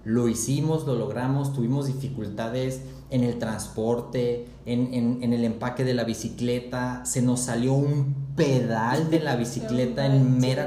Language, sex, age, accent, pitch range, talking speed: Spanish, male, 30-49, Mexican, 115-140 Hz, 145 wpm